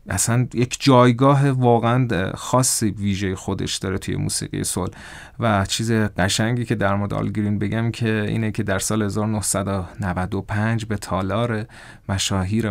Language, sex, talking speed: Persian, male, 130 wpm